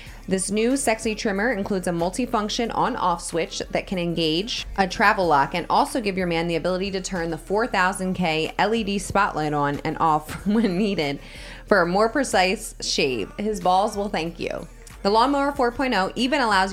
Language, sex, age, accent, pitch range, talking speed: English, female, 20-39, American, 170-230 Hz, 170 wpm